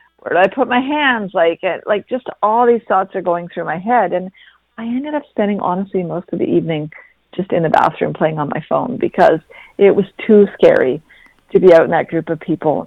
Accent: American